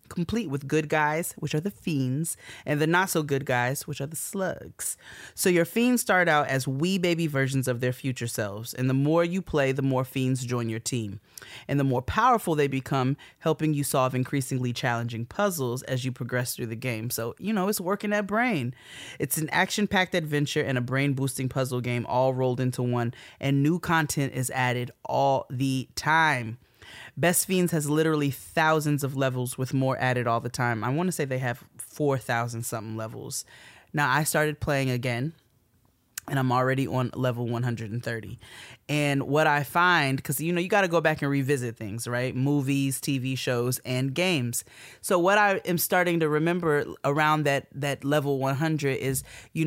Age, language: 30-49, English